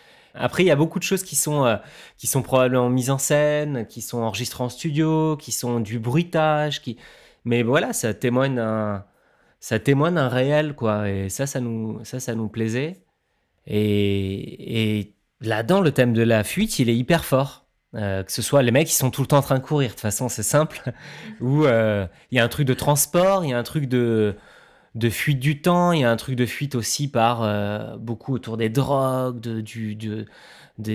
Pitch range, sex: 115-145 Hz, male